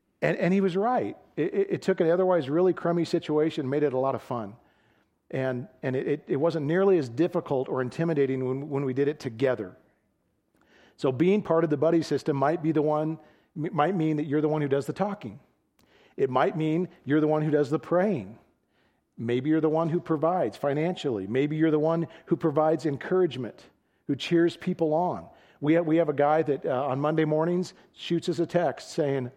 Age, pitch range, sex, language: 40-59, 140-170 Hz, male, English